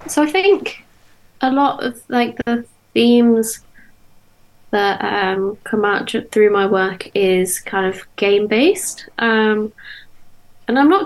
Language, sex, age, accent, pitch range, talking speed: English, female, 20-39, British, 195-225 Hz, 125 wpm